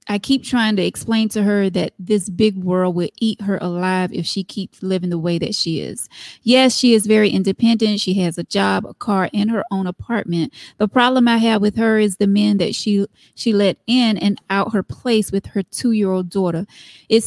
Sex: female